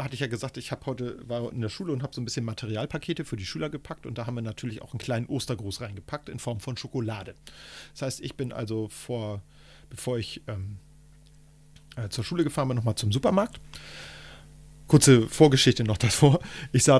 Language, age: German, 40-59